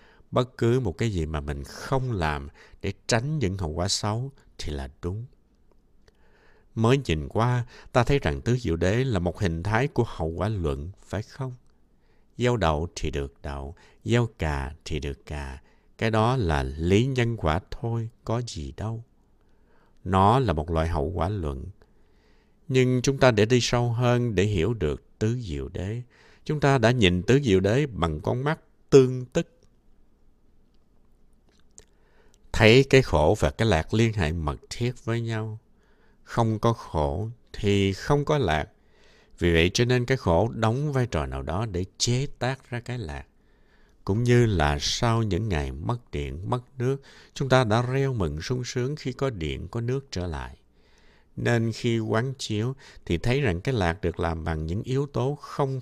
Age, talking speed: 60-79, 175 wpm